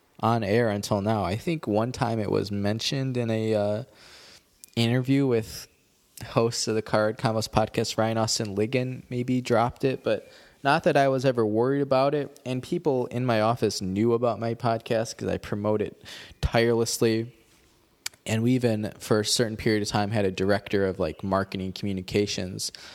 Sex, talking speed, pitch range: male, 175 wpm, 105-125 Hz